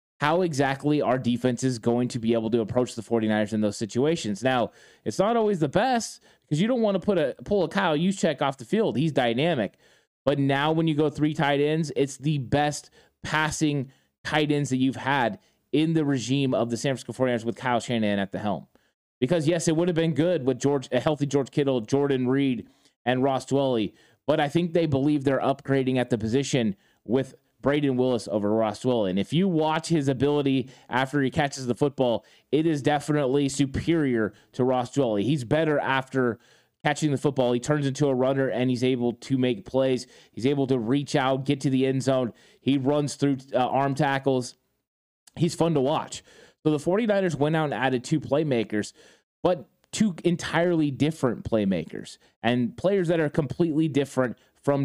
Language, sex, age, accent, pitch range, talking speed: English, male, 20-39, American, 125-155 Hz, 195 wpm